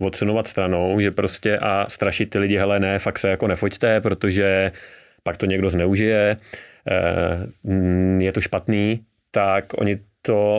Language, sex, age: Czech, male, 30-49